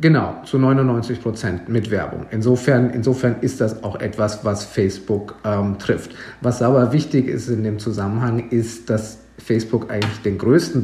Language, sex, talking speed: German, male, 160 wpm